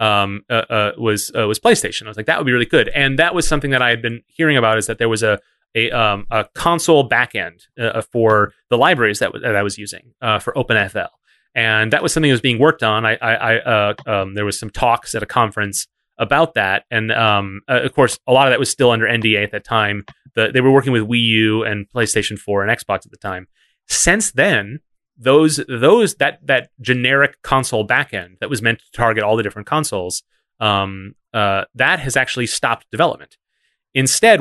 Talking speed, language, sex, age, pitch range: 225 wpm, English, male, 30-49, 110-135 Hz